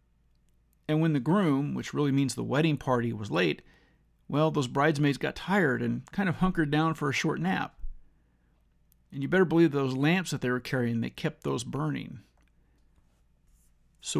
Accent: American